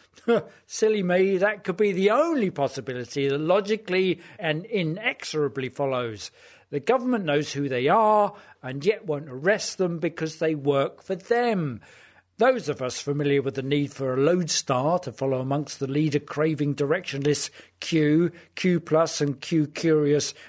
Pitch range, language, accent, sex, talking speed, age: 150-210 Hz, English, British, male, 145 wpm, 50-69